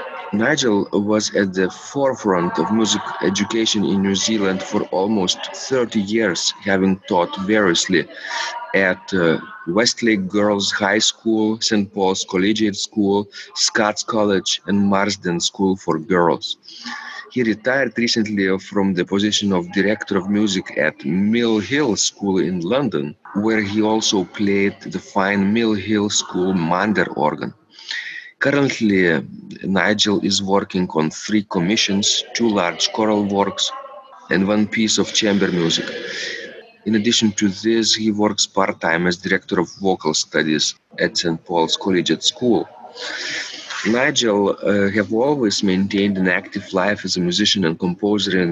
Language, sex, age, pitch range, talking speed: English, male, 40-59, 95-110 Hz, 140 wpm